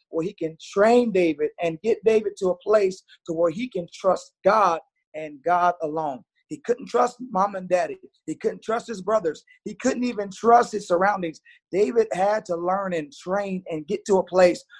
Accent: American